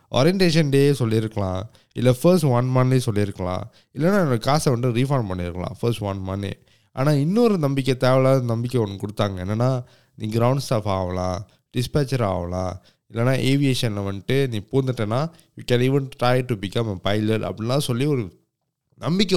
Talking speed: 155 wpm